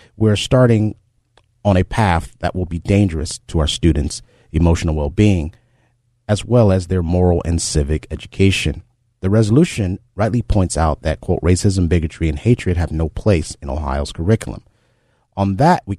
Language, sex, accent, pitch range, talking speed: English, male, American, 85-105 Hz, 160 wpm